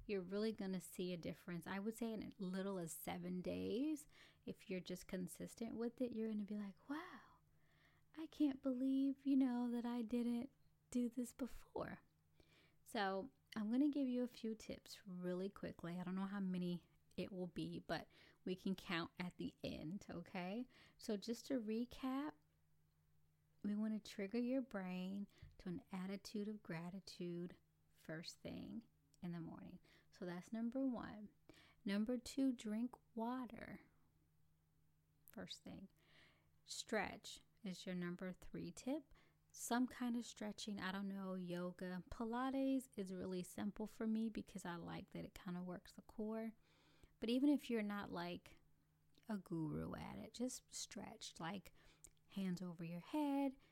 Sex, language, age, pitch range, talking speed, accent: female, English, 20-39, 175-235 Hz, 160 wpm, American